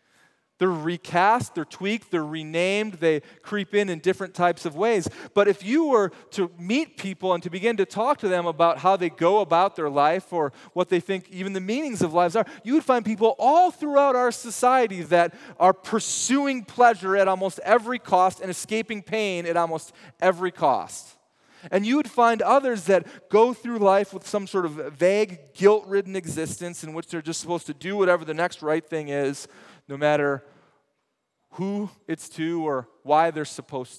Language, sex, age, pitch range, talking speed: English, male, 30-49, 160-220 Hz, 185 wpm